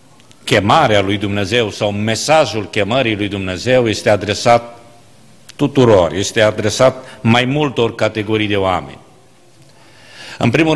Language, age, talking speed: Romanian, 50-69, 110 wpm